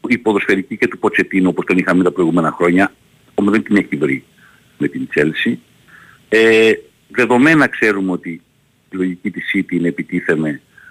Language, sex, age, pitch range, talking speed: Greek, male, 50-69, 95-145 Hz, 165 wpm